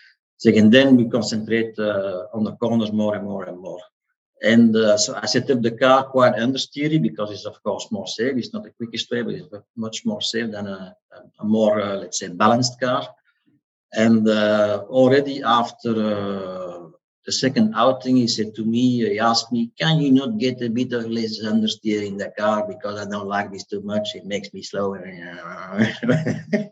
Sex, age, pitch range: male, 50-69, 110-140 Hz